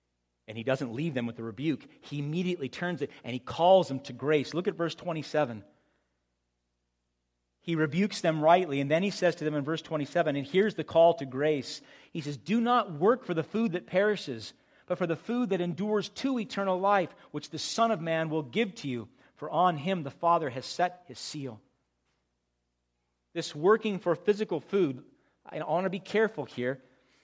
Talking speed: 200 wpm